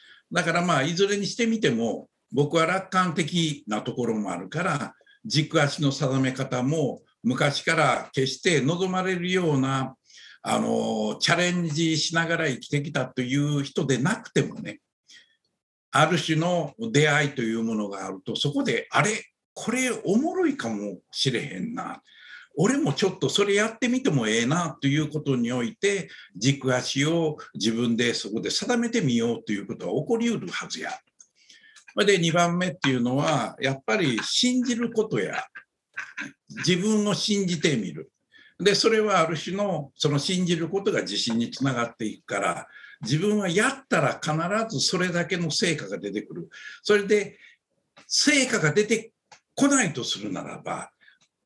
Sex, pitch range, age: male, 135-205 Hz, 60-79